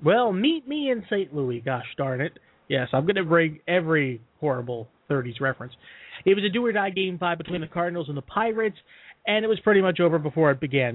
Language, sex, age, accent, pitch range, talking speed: English, male, 30-49, American, 140-190 Hz, 215 wpm